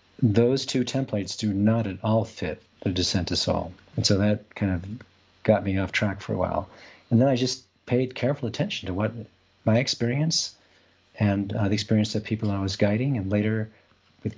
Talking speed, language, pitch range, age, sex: 195 wpm, English, 95-115 Hz, 50-69, male